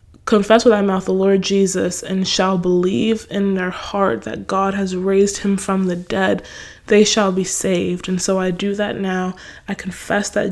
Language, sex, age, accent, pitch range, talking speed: English, female, 20-39, American, 190-230 Hz, 195 wpm